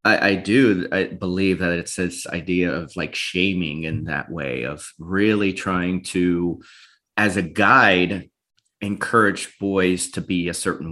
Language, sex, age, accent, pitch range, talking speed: English, male, 30-49, American, 90-100 Hz, 155 wpm